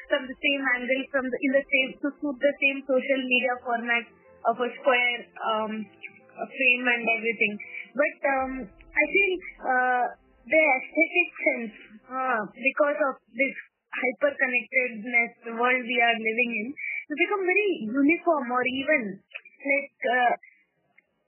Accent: Indian